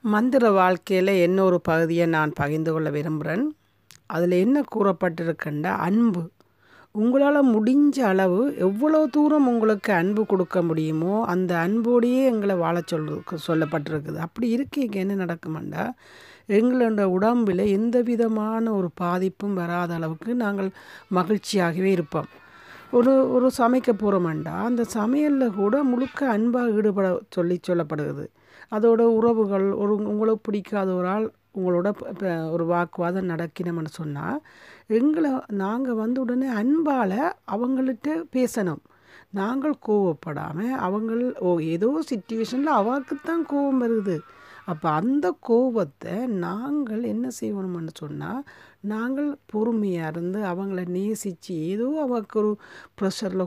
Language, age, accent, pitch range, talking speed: Tamil, 60-79, native, 175-240 Hz, 110 wpm